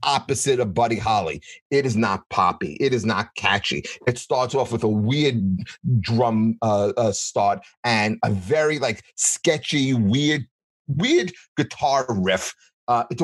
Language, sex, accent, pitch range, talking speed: English, male, American, 110-140 Hz, 145 wpm